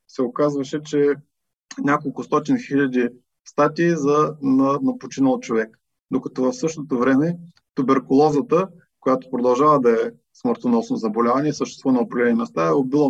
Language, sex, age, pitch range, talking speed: Bulgarian, male, 20-39, 130-160 Hz, 130 wpm